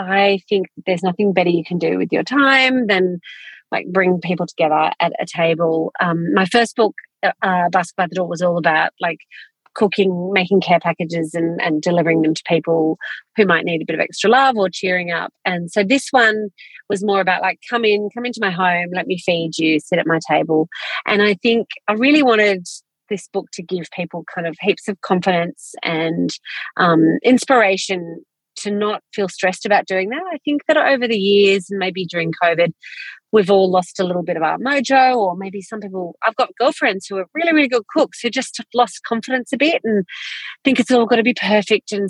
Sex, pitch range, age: female, 175-225 Hz, 30-49